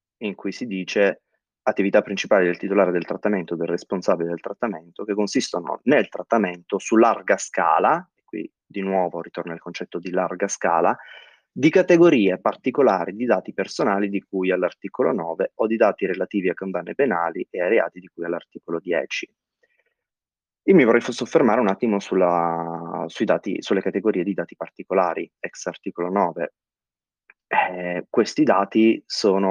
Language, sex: Italian, male